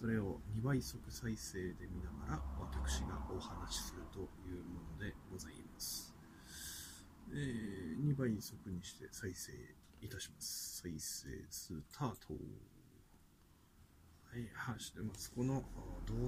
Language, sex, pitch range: Japanese, male, 80-125 Hz